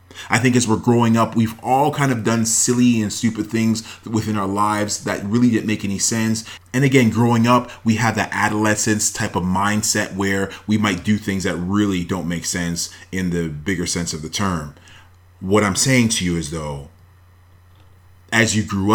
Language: English